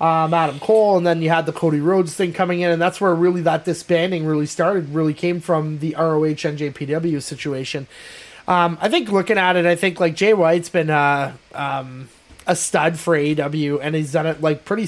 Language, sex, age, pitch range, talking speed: English, male, 20-39, 155-185 Hz, 215 wpm